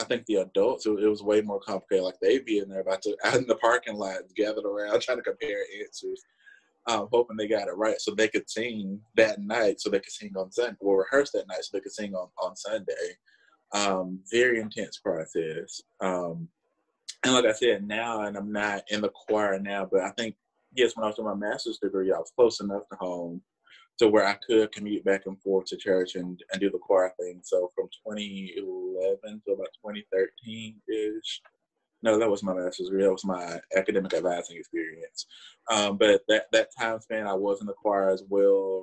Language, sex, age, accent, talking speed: English, male, 20-39, American, 215 wpm